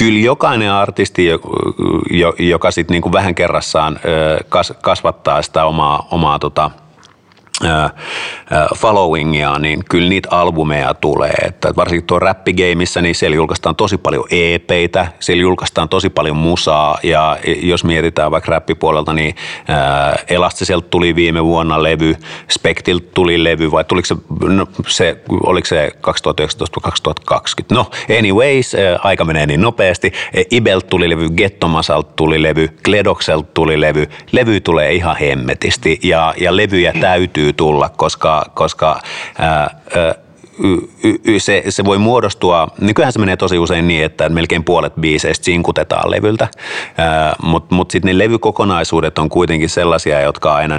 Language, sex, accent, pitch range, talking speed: Finnish, male, native, 80-90 Hz, 130 wpm